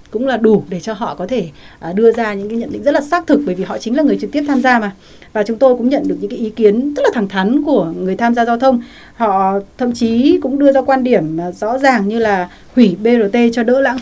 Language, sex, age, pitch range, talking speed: Vietnamese, female, 20-39, 195-255 Hz, 285 wpm